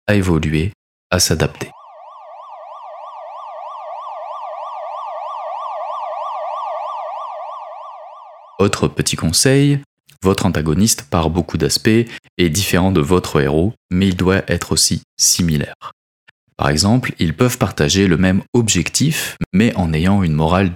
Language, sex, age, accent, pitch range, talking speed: French, male, 30-49, French, 80-105 Hz, 105 wpm